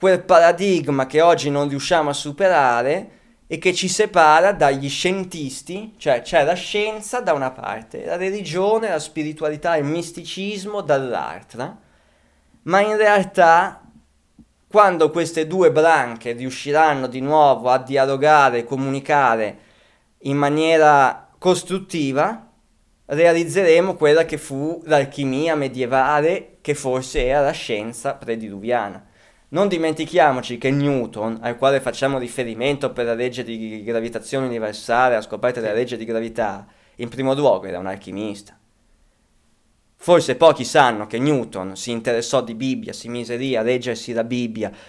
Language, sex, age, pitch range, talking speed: Italian, male, 20-39, 120-160 Hz, 130 wpm